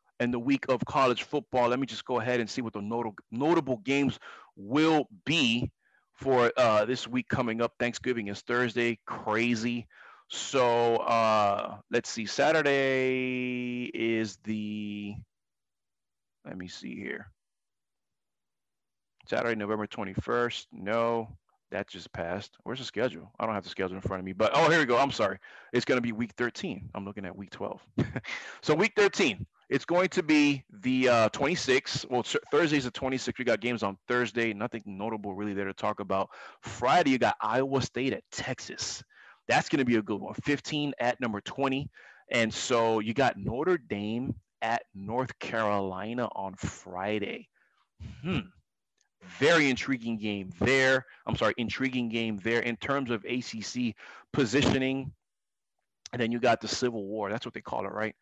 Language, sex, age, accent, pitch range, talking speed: English, male, 30-49, American, 110-130 Hz, 165 wpm